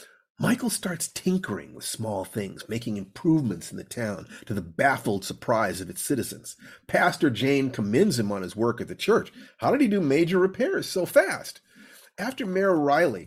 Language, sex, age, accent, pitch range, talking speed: English, male, 50-69, American, 110-155 Hz, 175 wpm